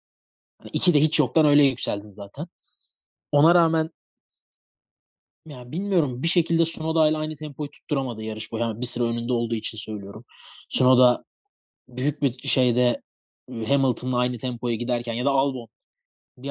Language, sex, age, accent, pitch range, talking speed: Turkish, male, 20-39, native, 125-160 Hz, 140 wpm